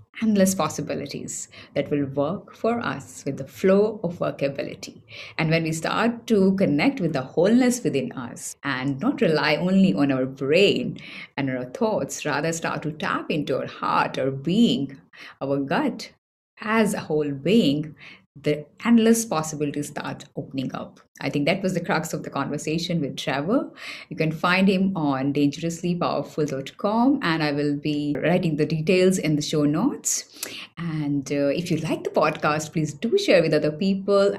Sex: female